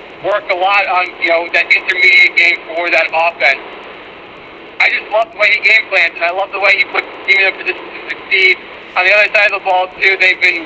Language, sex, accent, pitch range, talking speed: English, male, American, 180-230 Hz, 250 wpm